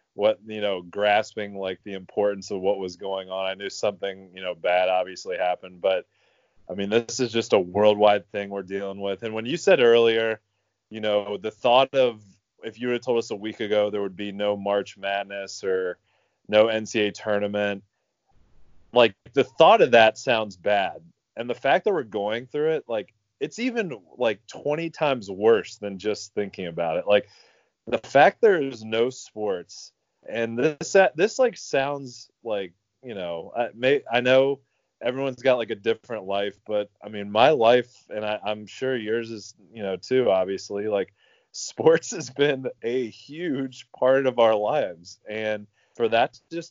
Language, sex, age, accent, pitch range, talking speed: English, male, 30-49, American, 100-125 Hz, 180 wpm